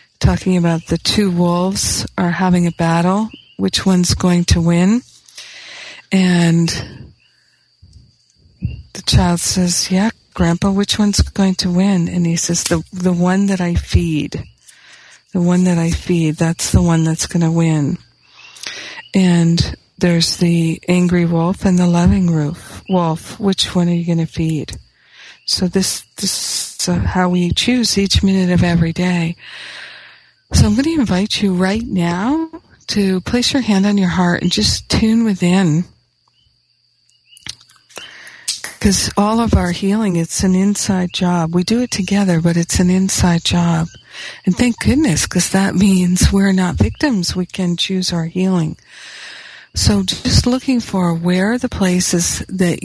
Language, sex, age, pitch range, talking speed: English, female, 50-69, 170-195 Hz, 155 wpm